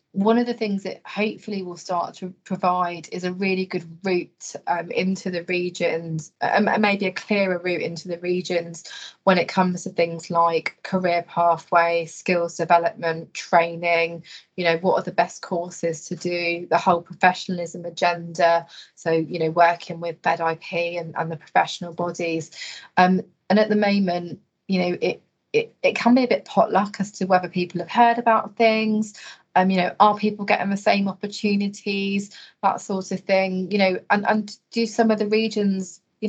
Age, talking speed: 20-39, 180 wpm